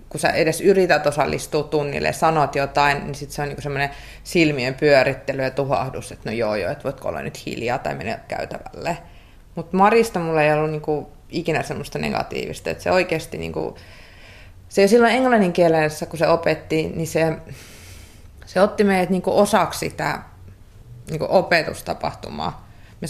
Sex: female